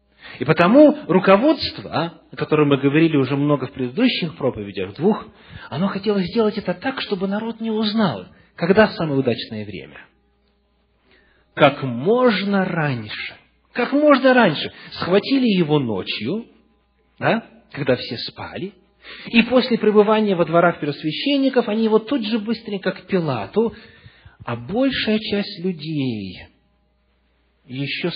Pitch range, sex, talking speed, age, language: 130-205 Hz, male, 125 wpm, 40-59, English